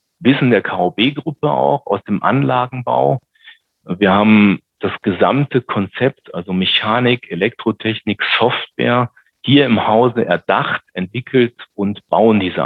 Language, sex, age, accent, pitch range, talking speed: German, male, 40-59, German, 95-120 Hz, 115 wpm